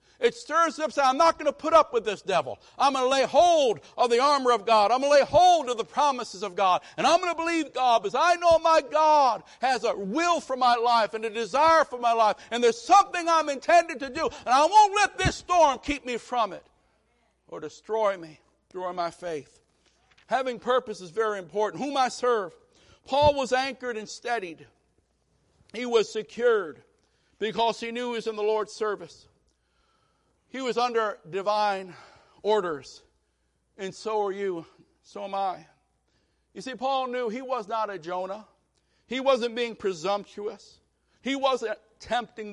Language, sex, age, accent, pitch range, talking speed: English, male, 60-79, American, 210-275 Hz, 190 wpm